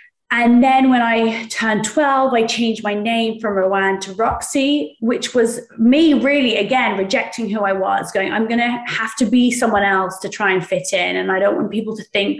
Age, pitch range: 20-39, 195-235 Hz